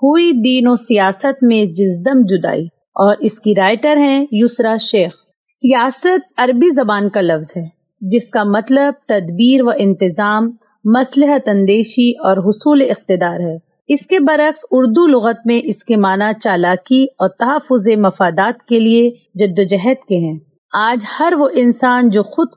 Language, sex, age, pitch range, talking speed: Urdu, female, 30-49, 200-270 Hz, 150 wpm